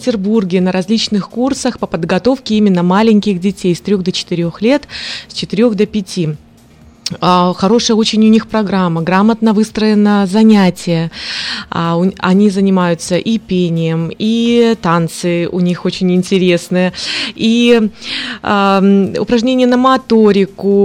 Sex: female